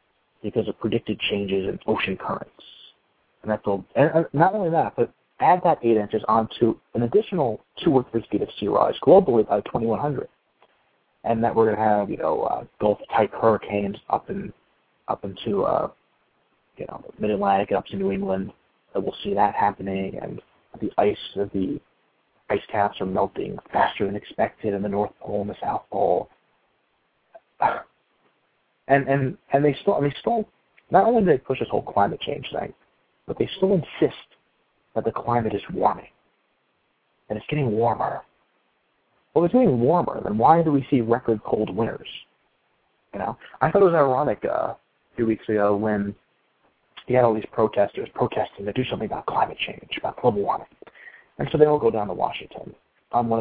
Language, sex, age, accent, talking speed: English, male, 30-49, American, 180 wpm